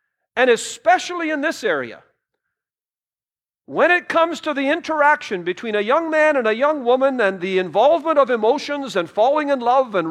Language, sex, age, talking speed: English, male, 50-69, 170 wpm